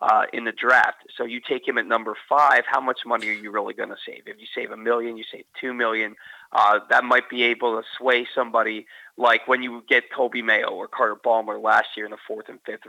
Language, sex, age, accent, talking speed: English, male, 40-59, American, 245 wpm